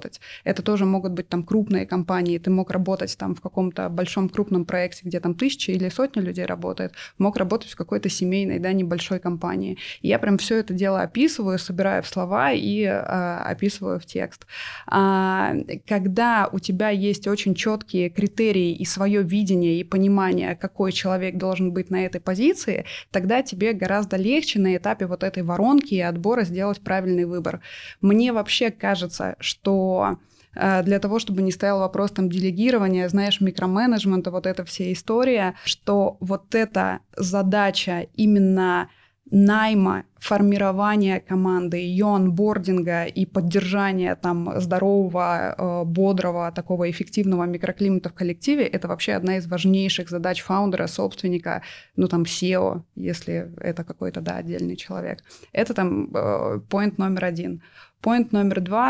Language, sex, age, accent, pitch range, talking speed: Russian, female, 20-39, native, 180-200 Hz, 145 wpm